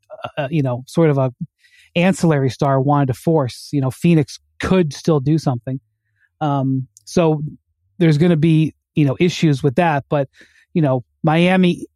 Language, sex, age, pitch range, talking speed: English, male, 30-49, 140-170 Hz, 160 wpm